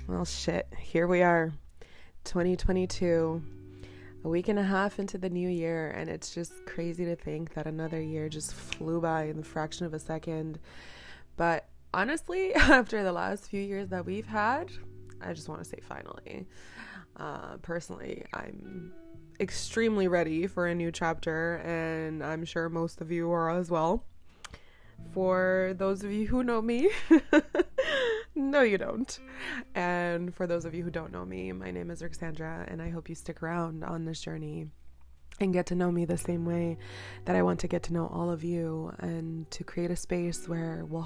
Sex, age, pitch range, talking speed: female, 20-39, 160-185 Hz, 180 wpm